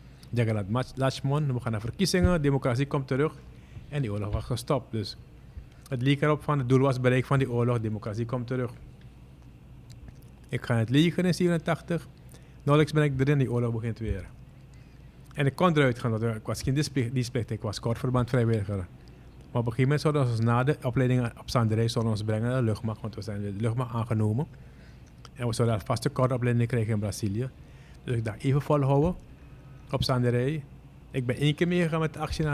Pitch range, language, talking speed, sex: 115-135 Hz, Dutch, 200 wpm, male